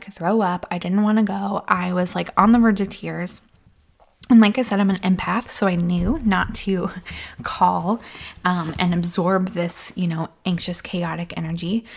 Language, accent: English, American